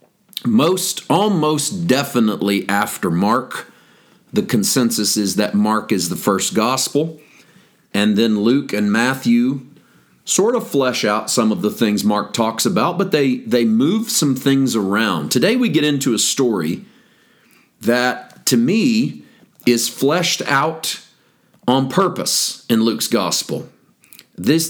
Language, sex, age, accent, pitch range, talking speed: English, male, 40-59, American, 115-160 Hz, 135 wpm